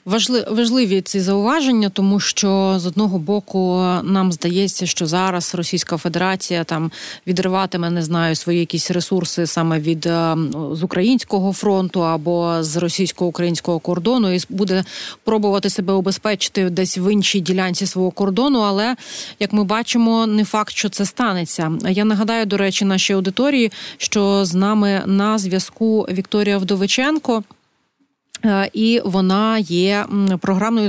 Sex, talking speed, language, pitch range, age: female, 130 wpm, Ukrainian, 185-215 Hz, 30-49